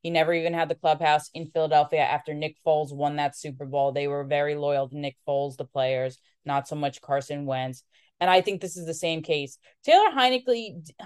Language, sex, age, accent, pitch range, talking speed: English, female, 20-39, American, 150-180 Hz, 210 wpm